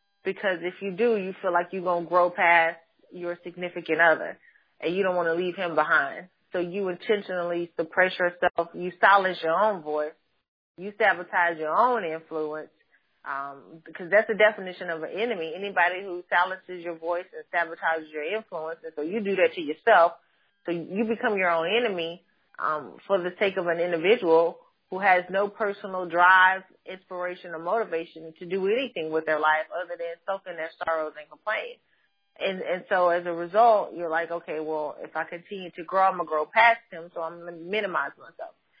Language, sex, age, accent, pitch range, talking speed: English, female, 30-49, American, 170-200 Hz, 190 wpm